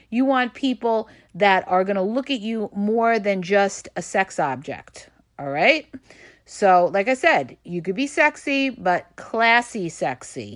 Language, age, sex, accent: English, 40-59, female, American